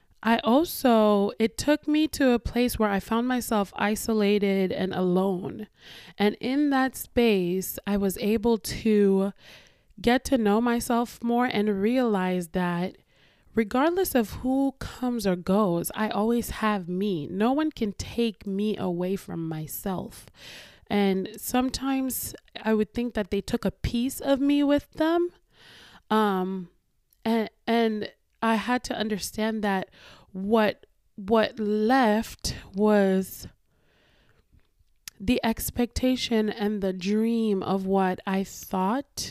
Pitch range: 190-235 Hz